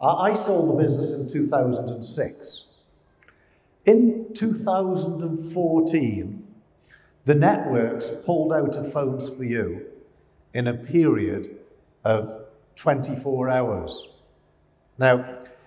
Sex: male